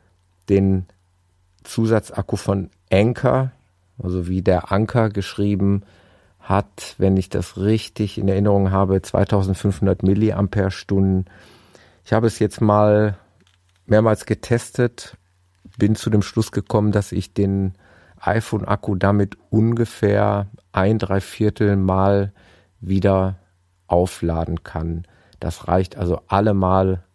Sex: male